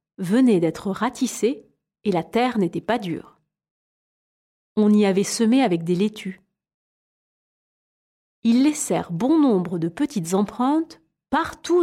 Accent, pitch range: French, 180-275 Hz